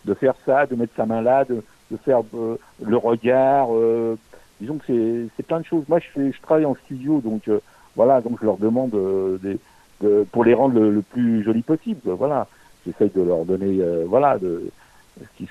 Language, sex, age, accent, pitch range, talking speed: French, male, 60-79, French, 100-135 Hz, 215 wpm